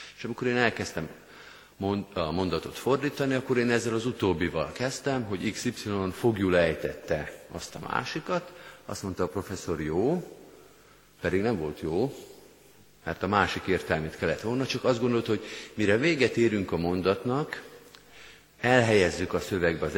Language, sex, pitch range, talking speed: Hungarian, male, 85-120 Hz, 145 wpm